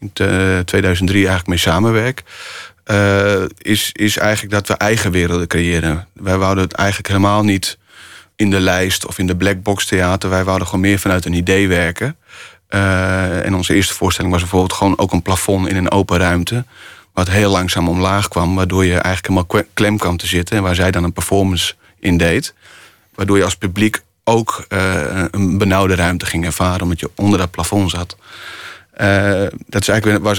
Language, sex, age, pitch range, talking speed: Dutch, male, 30-49, 90-100 Hz, 180 wpm